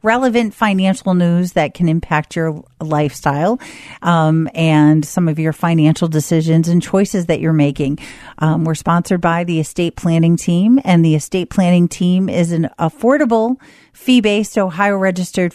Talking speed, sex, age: 145 wpm, female, 40-59